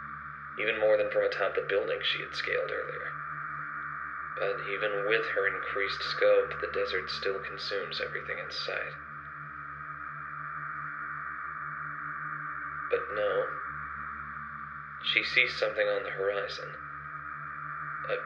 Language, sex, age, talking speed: English, male, 30-49, 110 wpm